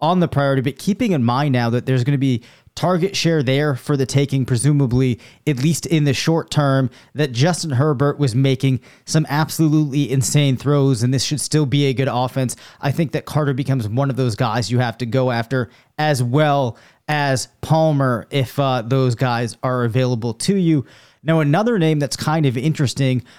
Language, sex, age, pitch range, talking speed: English, male, 30-49, 130-155 Hz, 195 wpm